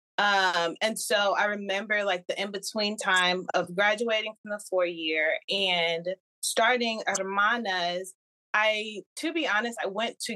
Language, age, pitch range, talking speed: English, 20-39, 185-215 Hz, 140 wpm